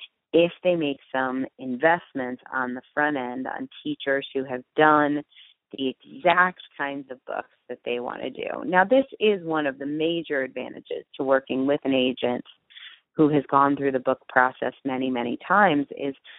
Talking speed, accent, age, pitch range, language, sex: 175 wpm, American, 30-49, 135-165 Hz, English, female